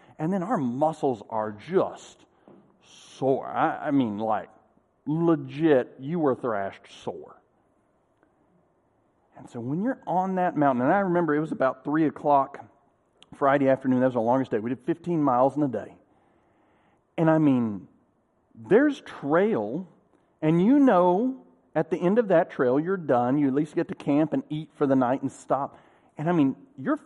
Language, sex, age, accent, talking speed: English, male, 40-59, American, 175 wpm